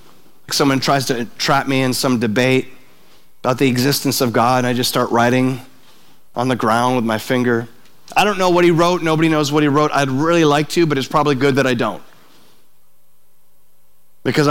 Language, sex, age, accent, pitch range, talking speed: English, male, 40-59, American, 130-170 Hz, 195 wpm